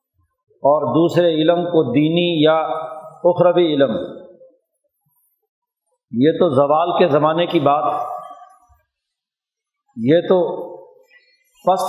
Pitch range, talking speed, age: 160-235 Hz, 90 wpm, 50-69